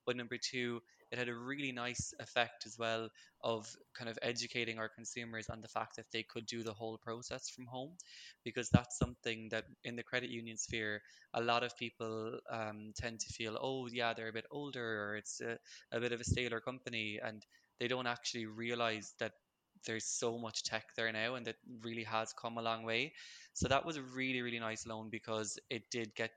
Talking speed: 210 wpm